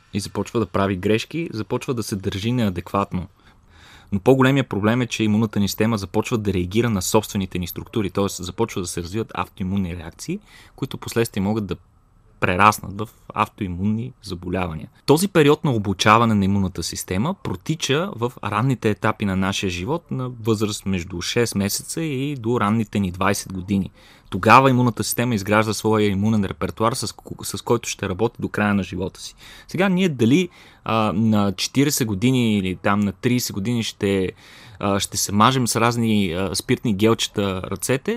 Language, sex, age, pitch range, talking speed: Bulgarian, male, 30-49, 100-125 Hz, 165 wpm